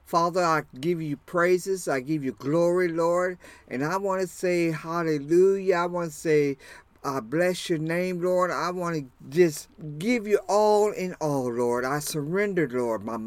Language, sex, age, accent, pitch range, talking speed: English, male, 50-69, American, 130-190 Hz, 175 wpm